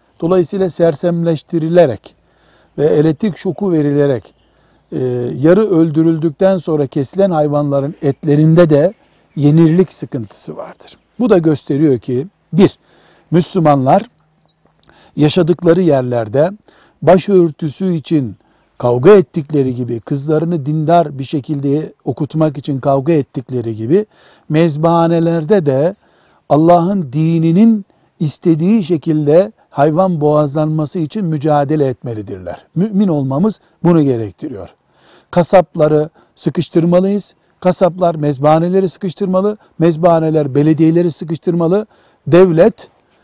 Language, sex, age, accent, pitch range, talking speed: Turkish, male, 60-79, native, 145-175 Hz, 85 wpm